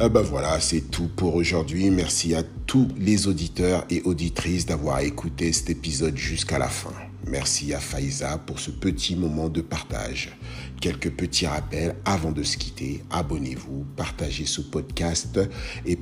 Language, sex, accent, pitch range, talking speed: French, male, French, 75-95 Hz, 155 wpm